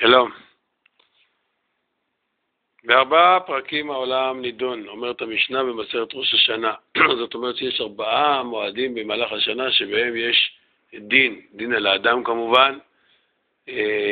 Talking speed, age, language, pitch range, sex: 105 wpm, 50-69, Hebrew, 115-135 Hz, male